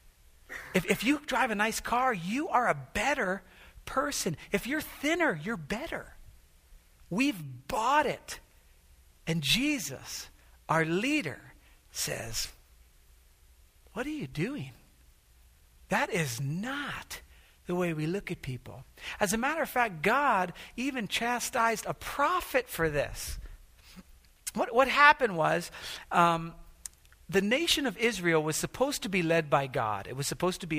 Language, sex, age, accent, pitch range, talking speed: English, male, 50-69, American, 140-235 Hz, 140 wpm